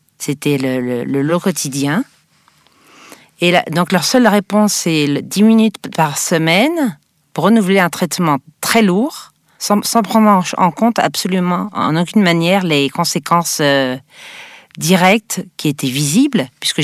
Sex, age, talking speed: female, 40-59, 140 wpm